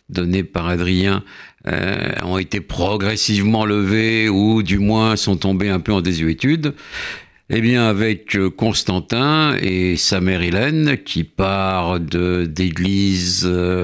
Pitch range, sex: 90-110 Hz, male